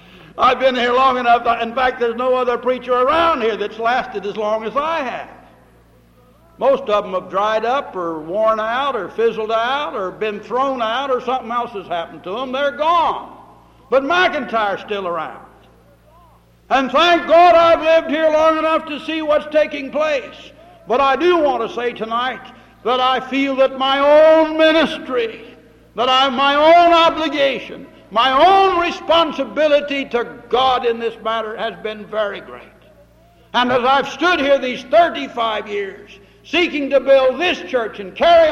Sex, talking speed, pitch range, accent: male, 170 wpm, 220-300 Hz, American